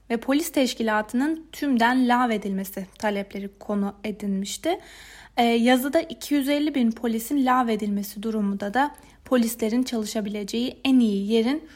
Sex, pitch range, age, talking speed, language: female, 210-255 Hz, 30-49, 100 wpm, Turkish